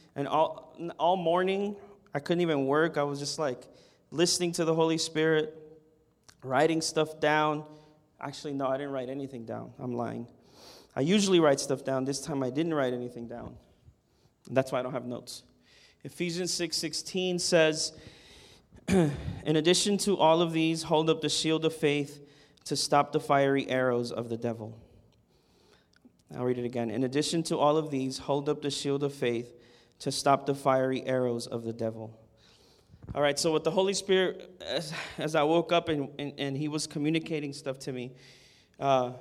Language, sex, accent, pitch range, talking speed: English, male, American, 130-165 Hz, 180 wpm